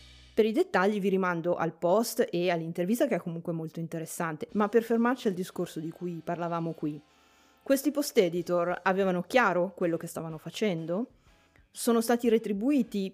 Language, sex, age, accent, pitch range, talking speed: Italian, female, 20-39, native, 165-205 Hz, 160 wpm